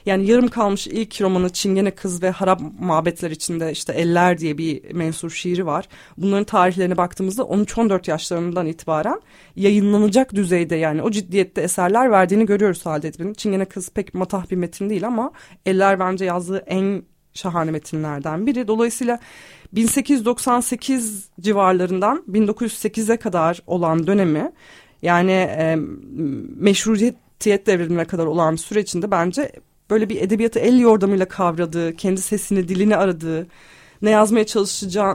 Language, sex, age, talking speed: Turkish, female, 30-49, 130 wpm